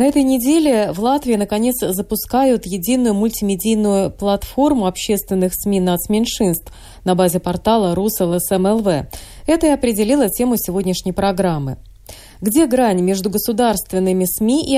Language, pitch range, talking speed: Russian, 185-255 Hz, 120 wpm